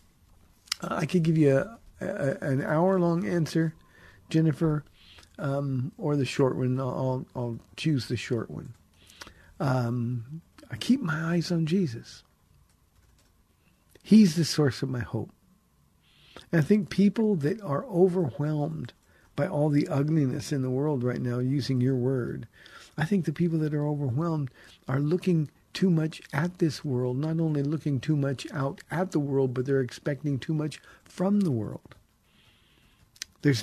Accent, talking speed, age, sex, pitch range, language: American, 150 wpm, 50-69, male, 125-165 Hz, English